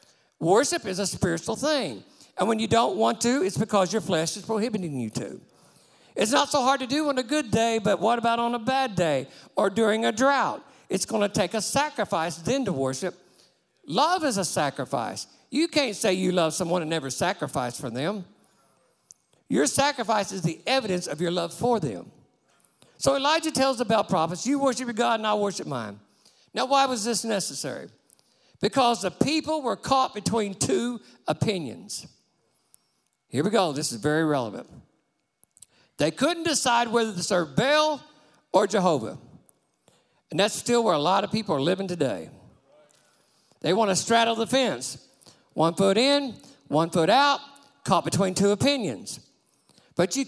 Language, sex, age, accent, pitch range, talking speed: English, male, 50-69, American, 175-255 Hz, 175 wpm